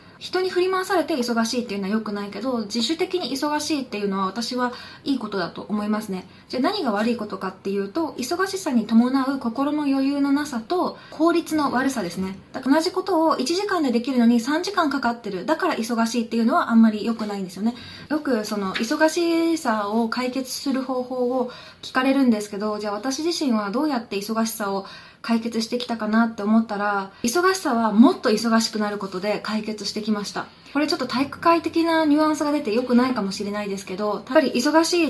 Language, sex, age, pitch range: Japanese, female, 20-39, 215-305 Hz